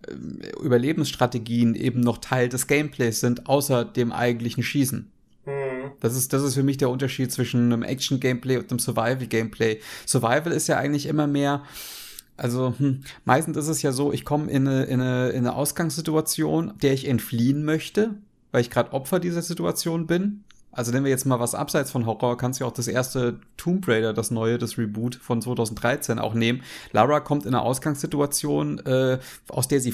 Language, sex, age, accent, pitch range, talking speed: German, male, 30-49, German, 120-145 Hz, 180 wpm